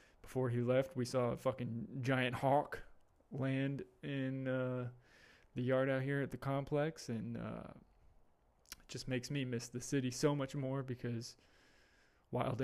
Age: 20-39